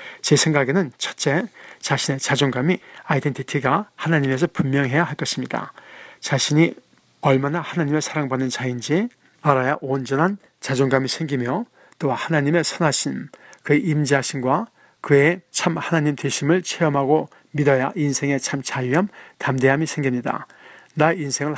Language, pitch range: Korean, 135-160 Hz